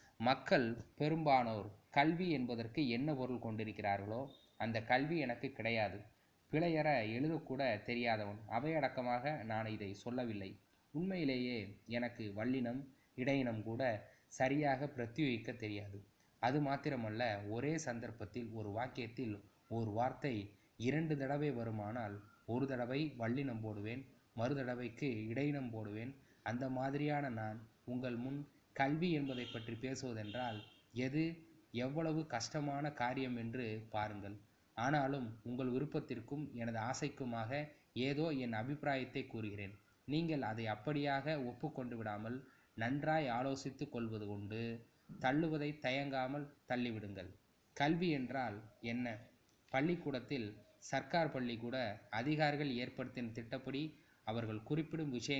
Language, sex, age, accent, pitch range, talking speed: Tamil, male, 20-39, native, 110-145 Hz, 100 wpm